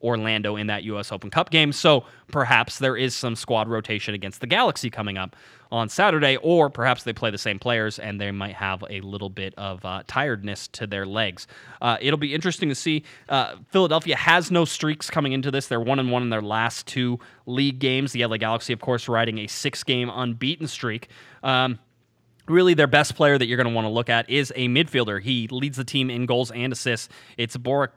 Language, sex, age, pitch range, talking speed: English, male, 20-39, 110-135 Hz, 220 wpm